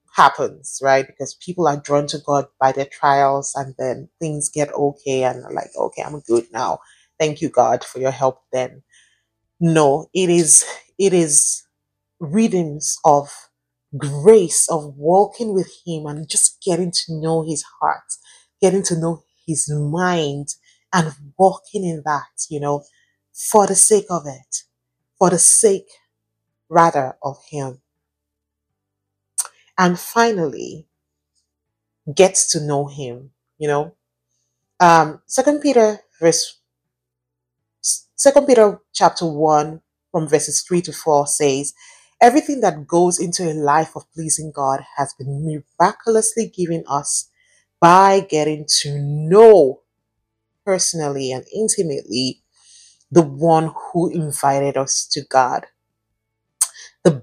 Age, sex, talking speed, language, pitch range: 30-49, female, 125 wpm, English, 135-175 Hz